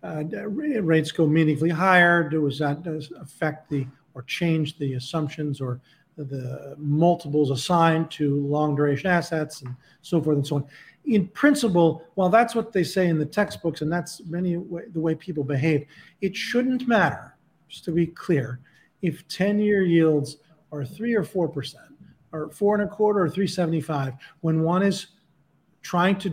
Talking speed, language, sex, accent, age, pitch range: 165 wpm, English, male, American, 40-59, 150-190 Hz